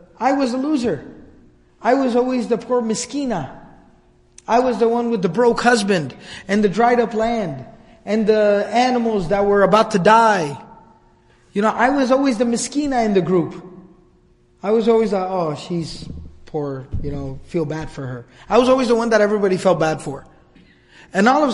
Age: 30-49